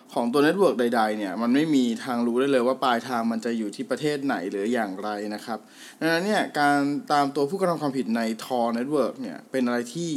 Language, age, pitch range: Thai, 20-39, 130-205 Hz